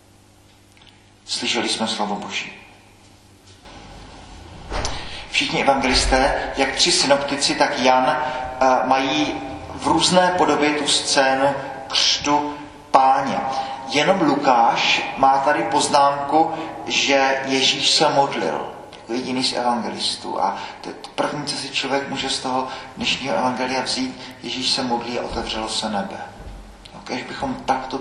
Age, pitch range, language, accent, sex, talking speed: 40-59, 115-135 Hz, Czech, native, male, 120 wpm